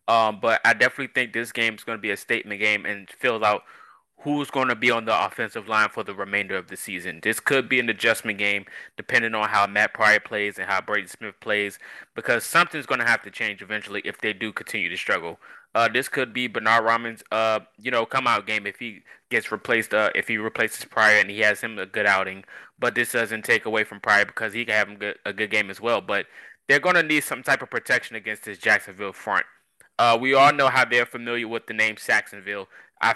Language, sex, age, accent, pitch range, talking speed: English, male, 20-39, American, 105-125 Hz, 240 wpm